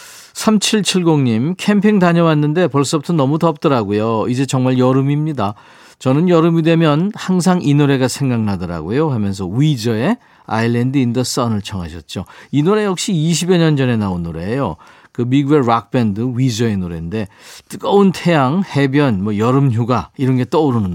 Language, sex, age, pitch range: Korean, male, 40-59, 115-165 Hz